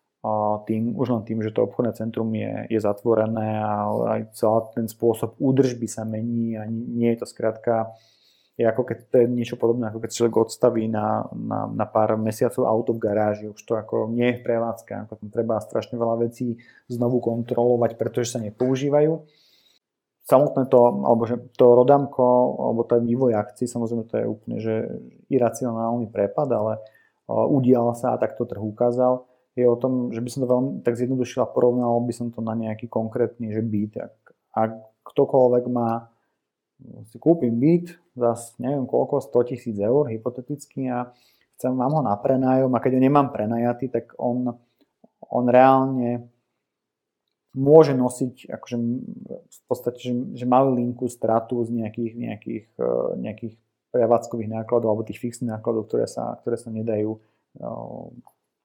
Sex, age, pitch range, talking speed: male, 30-49, 110-125 Hz, 160 wpm